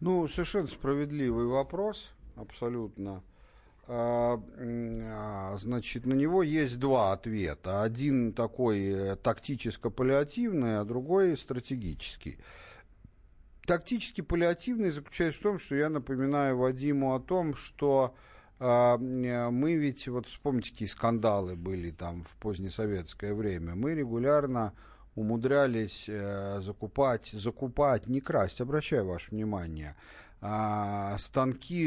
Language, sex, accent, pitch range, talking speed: Russian, male, native, 100-140 Hz, 100 wpm